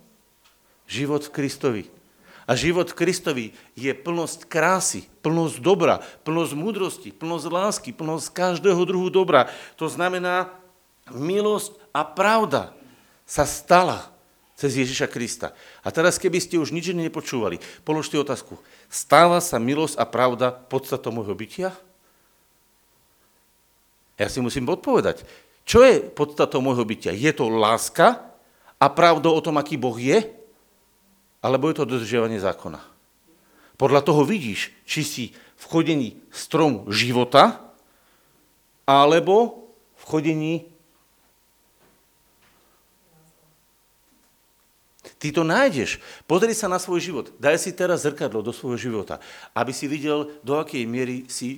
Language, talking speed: Slovak, 120 wpm